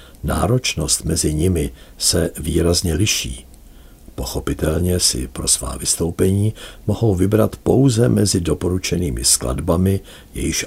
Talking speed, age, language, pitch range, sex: 100 wpm, 60-79, Czech, 75-95 Hz, male